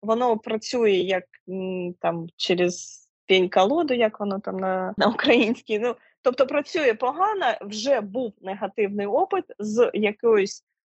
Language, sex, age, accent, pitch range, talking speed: Ukrainian, female, 20-39, native, 185-245 Hz, 125 wpm